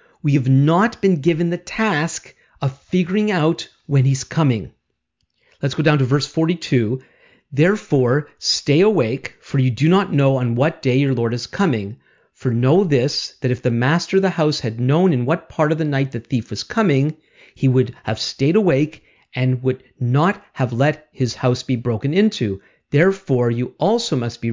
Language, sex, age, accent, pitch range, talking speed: English, male, 50-69, American, 125-160 Hz, 185 wpm